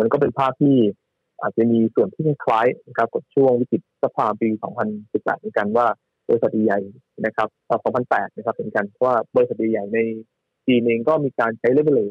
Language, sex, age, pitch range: Thai, male, 20-39, 110-140 Hz